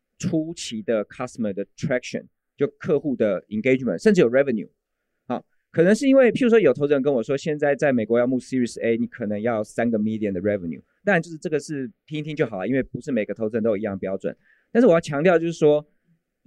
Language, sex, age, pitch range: Chinese, male, 20-39, 120-165 Hz